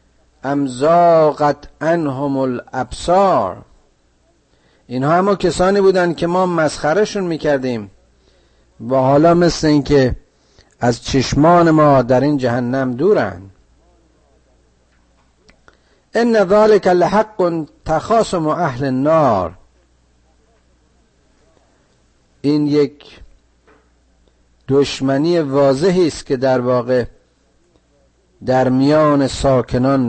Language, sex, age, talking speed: Persian, male, 50-69, 80 wpm